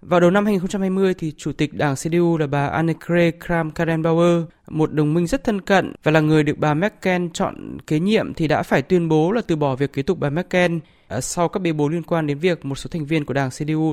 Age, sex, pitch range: 20-39, male, 155-185 Hz